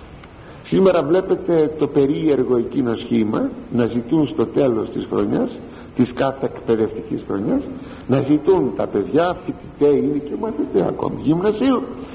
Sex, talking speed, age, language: male, 130 wpm, 60-79, Greek